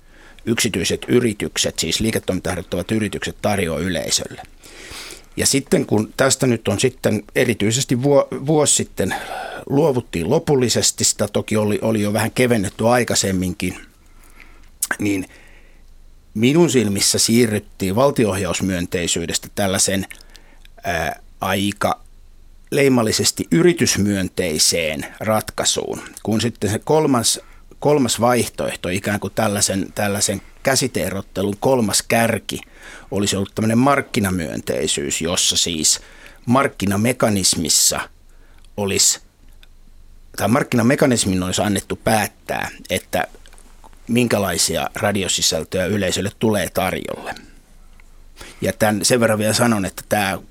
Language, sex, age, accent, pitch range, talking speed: Finnish, male, 60-79, native, 95-120 Hz, 90 wpm